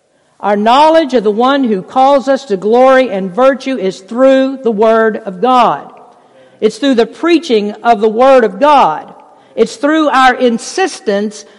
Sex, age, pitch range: female, 50-69, 215-285 Hz